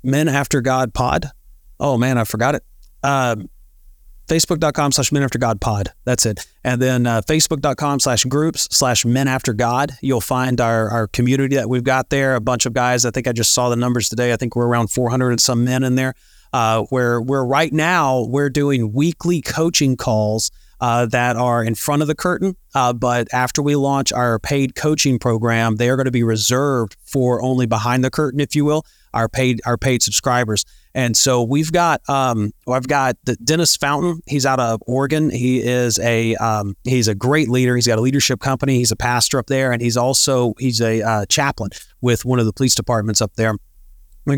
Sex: male